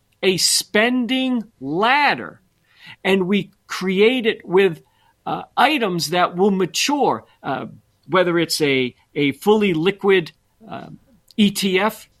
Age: 50-69